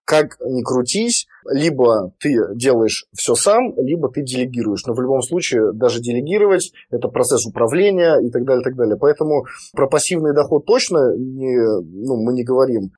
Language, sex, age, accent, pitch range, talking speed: Russian, male, 20-39, native, 125-175 Hz, 170 wpm